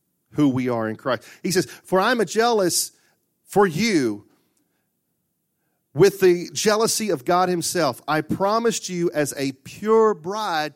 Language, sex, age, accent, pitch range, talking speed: English, male, 40-59, American, 160-205 Hz, 150 wpm